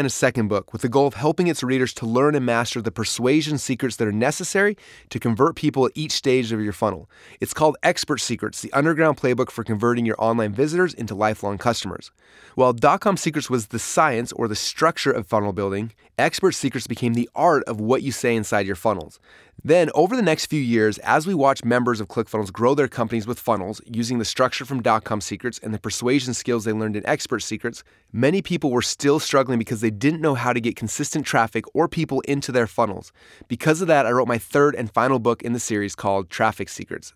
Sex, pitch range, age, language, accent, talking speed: male, 110-140 Hz, 30-49, English, American, 220 wpm